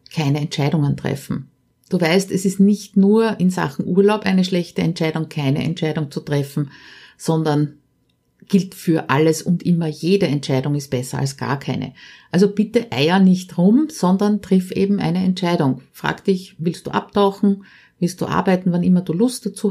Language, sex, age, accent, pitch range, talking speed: German, female, 50-69, Austrian, 165-200 Hz, 165 wpm